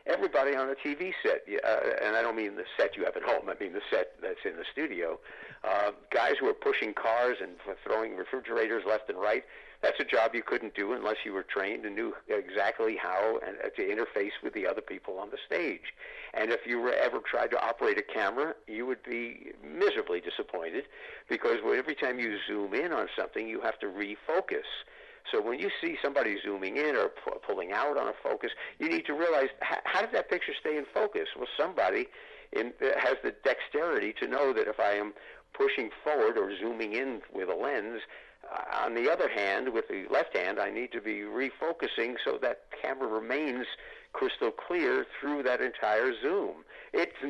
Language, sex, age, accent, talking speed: English, male, 50-69, American, 195 wpm